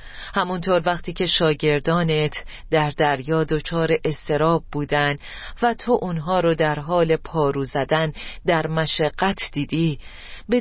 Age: 40-59